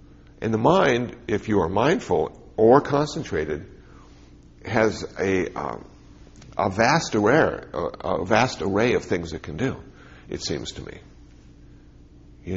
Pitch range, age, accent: 80-110 Hz, 60-79, American